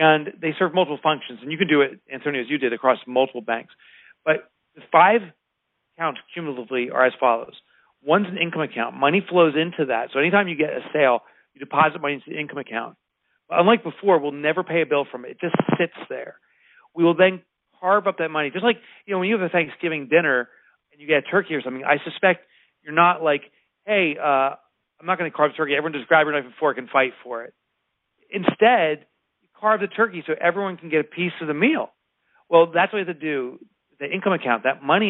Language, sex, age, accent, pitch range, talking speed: English, male, 40-59, American, 135-175 Hz, 225 wpm